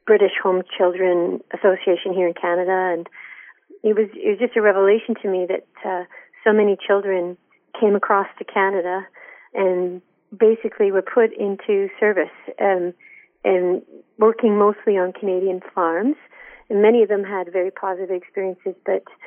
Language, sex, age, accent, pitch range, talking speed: English, female, 40-59, American, 185-210 Hz, 150 wpm